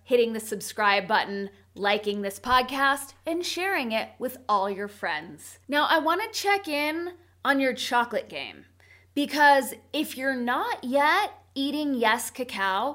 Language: English